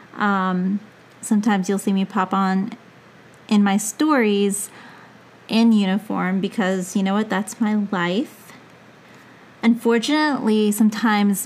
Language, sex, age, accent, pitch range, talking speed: English, female, 30-49, American, 190-225 Hz, 110 wpm